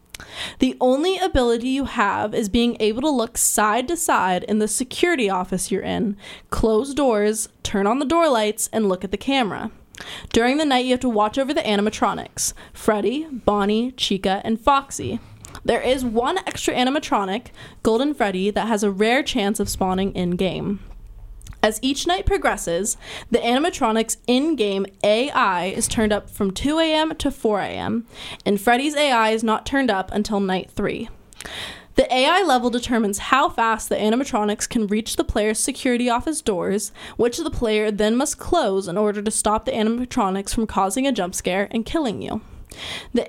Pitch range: 205-255 Hz